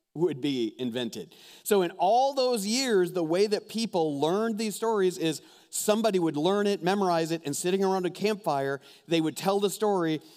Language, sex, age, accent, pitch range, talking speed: English, male, 40-59, American, 135-195 Hz, 185 wpm